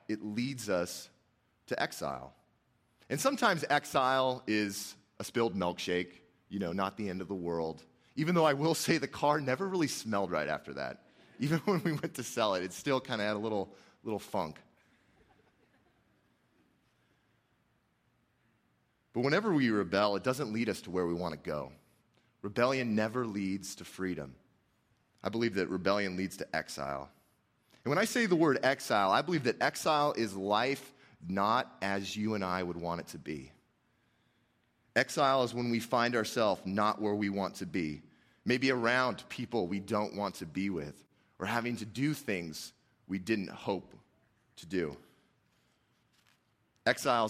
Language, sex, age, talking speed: English, male, 30-49, 165 wpm